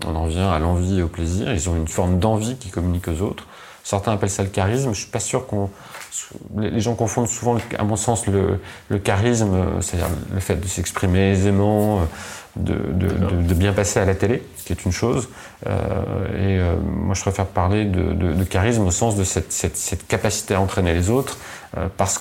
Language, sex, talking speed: French, male, 210 wpm